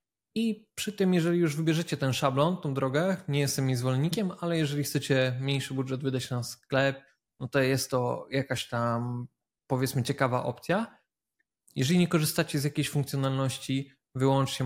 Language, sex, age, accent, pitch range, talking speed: Polish, male, 20-39, native, 125-145 Hz, 150 wpm